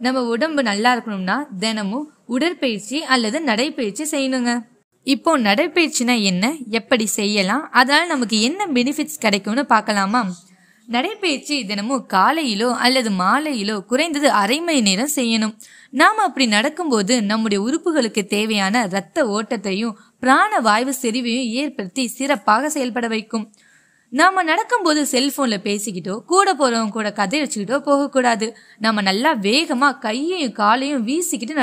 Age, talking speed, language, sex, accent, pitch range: 20-39, 80 wpm, Tamil, female, native, 215-285 Hz